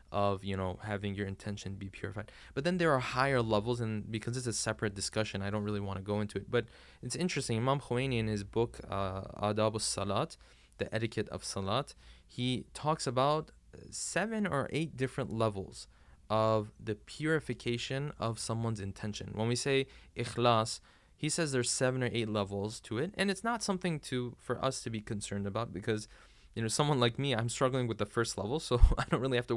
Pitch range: 105-135 Hz